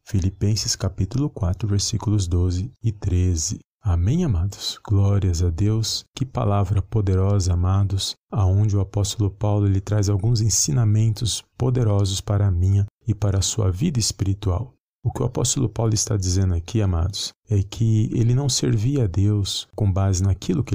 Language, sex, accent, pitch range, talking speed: Portuguese, male, Brazilian, 95-110 Hz, 155 wpm